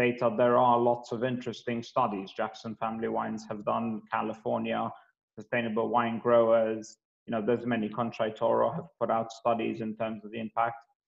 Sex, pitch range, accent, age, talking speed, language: male, 115-135 Hz, British, 30-49, 160 wpm, English